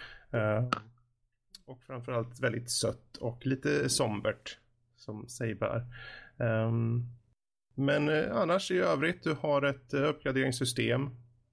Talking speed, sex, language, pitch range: 110 wpm, male, Swedish, 115-135 Hz